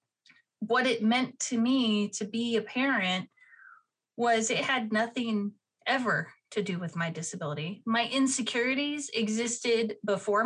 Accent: American